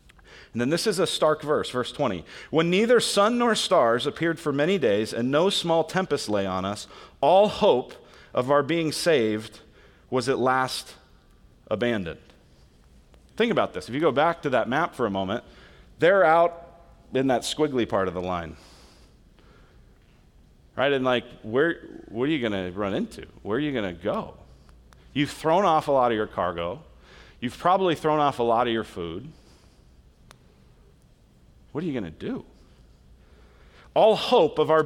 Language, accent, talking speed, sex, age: English, American, 170 wpm, male, 40-59